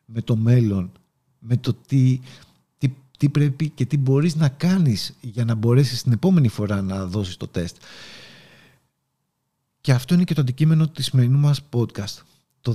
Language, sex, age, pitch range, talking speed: Greek, male, 50-69, 120-145 Hz, 165 wpm